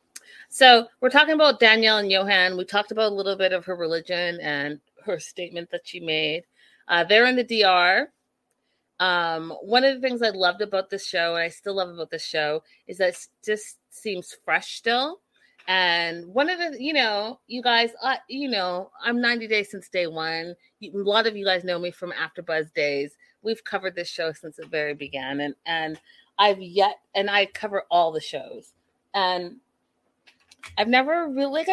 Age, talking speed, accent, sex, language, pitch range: 30-49, 195 wpm, American, female, English, 170-225 Hz